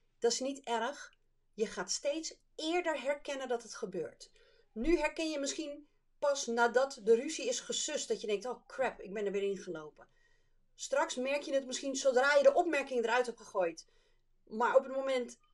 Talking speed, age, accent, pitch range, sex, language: 190 wpm, 40-59, Dutch, 225-330 Hz, female, Dutch